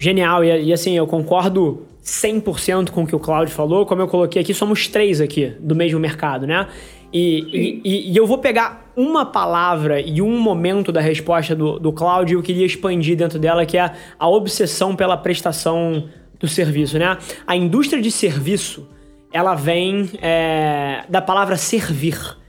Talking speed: 170 wpm